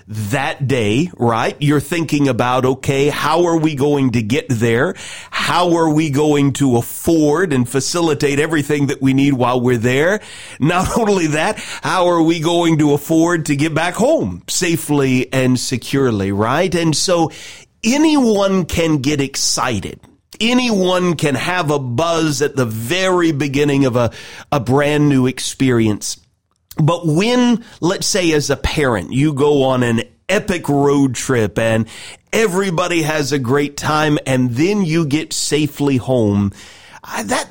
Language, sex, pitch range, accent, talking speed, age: English, male, 130-170 Hz, American, 150 wpm, 40-59